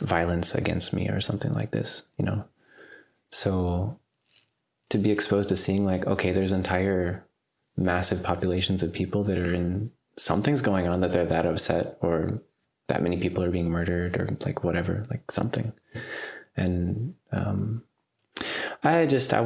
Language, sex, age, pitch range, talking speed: English, male, 20-39, 90-105 Hz, 155 wpm